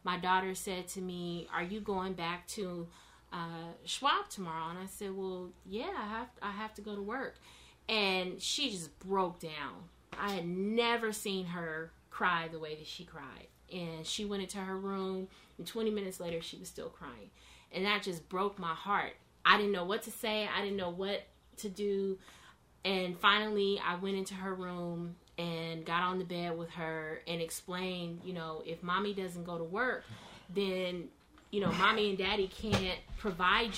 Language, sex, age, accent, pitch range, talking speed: English, female, 20-39, American, 175-200 Hz, 190 wpm